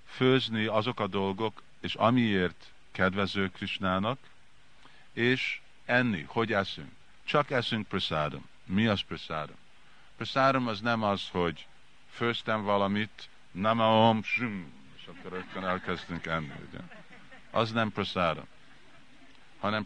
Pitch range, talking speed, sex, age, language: 95-110 Hz, 105 wpm, male, 50-69, Hungarian